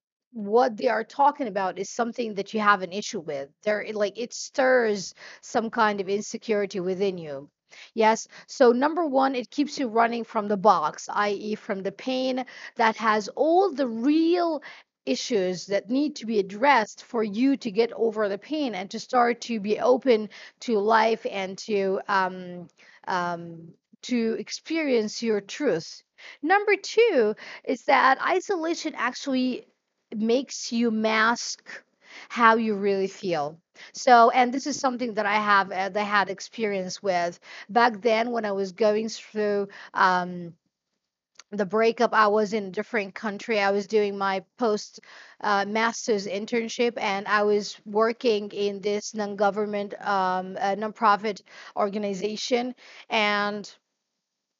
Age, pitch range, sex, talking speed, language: 40-59, 200-240 Hz, female, 145 wpm, English